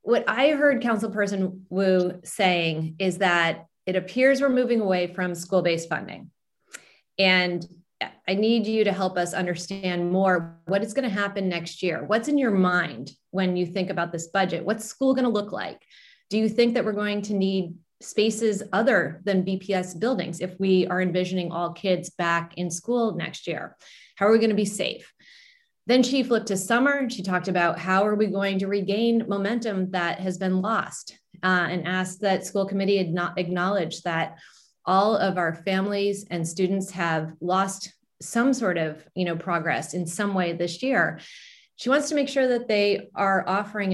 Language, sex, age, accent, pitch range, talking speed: English, female, 30-49, American, 175-210 Hz, 185 wpm